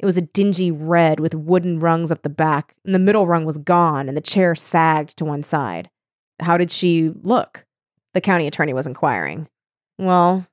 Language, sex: English, female